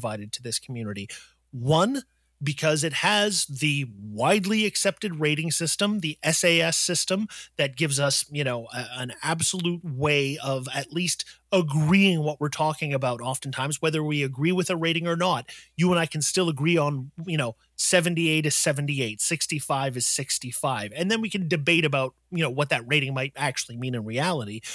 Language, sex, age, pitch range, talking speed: English, male, 30-49, 135-175 Hz, 170 wpm